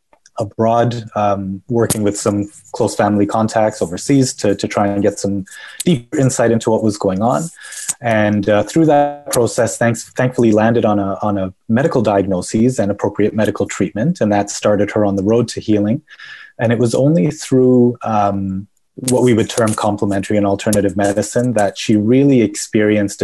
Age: 20-39